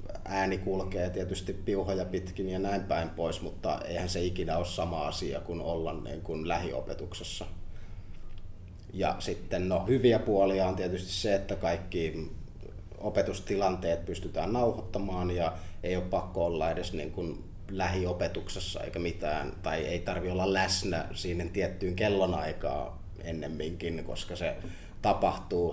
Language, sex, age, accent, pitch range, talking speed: Finnish, male, 30-49, native, 85-100 Hz, 135 wpm